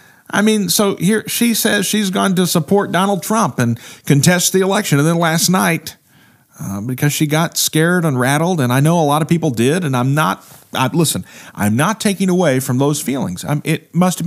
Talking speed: 205 wpm